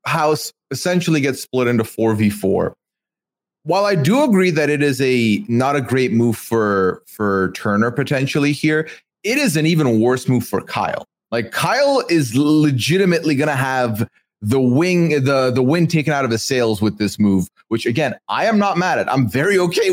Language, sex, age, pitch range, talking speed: English, male, 30-49, 115-155 Hz, 185 wpm